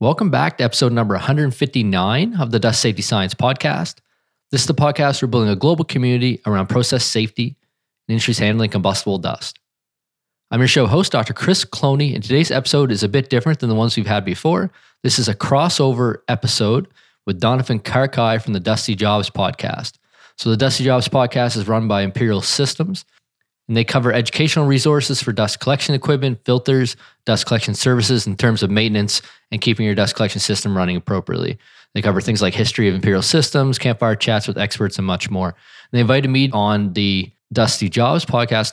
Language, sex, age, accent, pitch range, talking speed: English, male, 20-39, American, 105-130 Hz, 185 wpm